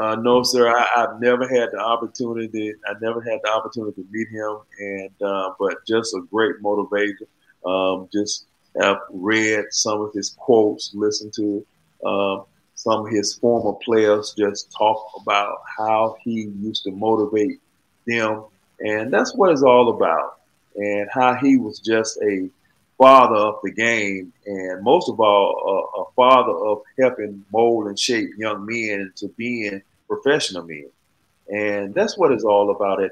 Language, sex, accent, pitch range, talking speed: English, male, American, 100-115 Hz, 165 wpm